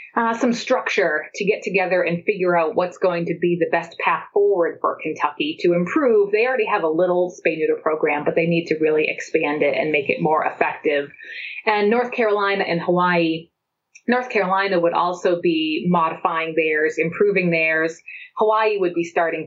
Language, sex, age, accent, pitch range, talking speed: English, female, 30-49, American, 165-220 Hz, 180 wpm